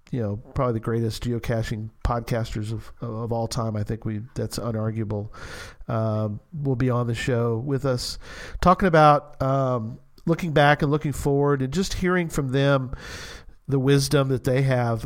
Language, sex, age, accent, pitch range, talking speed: English, male, 40-59, American, 110-140 Hz, 165 wpm